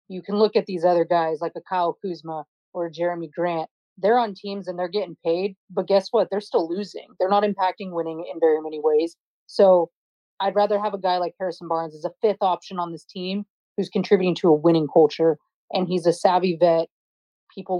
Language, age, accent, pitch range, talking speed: English, 30-49, American, 170-200 Hz, 210 wpm